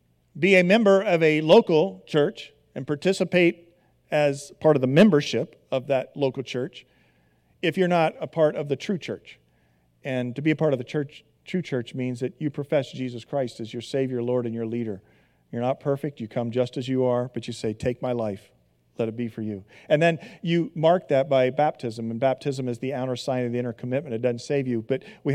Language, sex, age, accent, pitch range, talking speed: English, male, 40-59, American, 120-155 Hz, 220 wpm